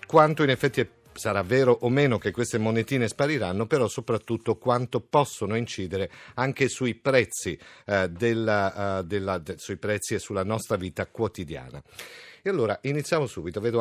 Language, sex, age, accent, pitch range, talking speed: Italian, male, 50-69, native, 105-130 Hz, 130 wpm